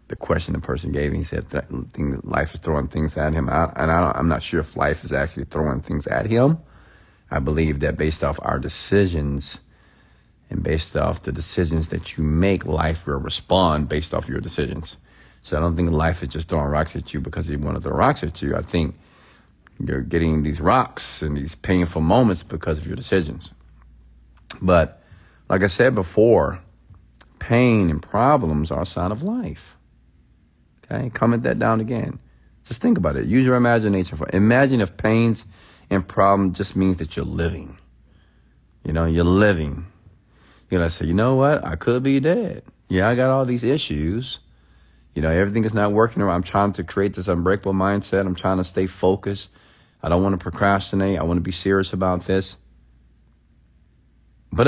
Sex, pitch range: male, 75-100 Hz